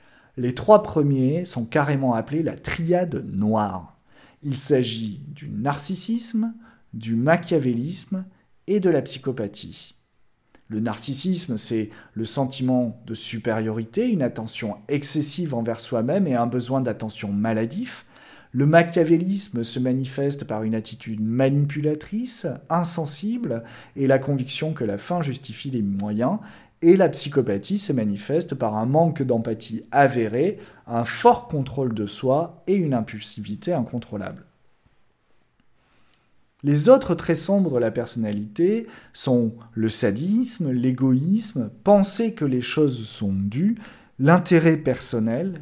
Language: French